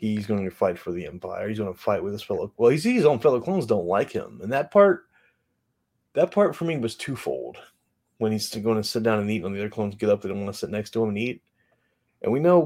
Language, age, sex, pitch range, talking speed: English, 30-49, male, 100-120 Hz, 285 wpm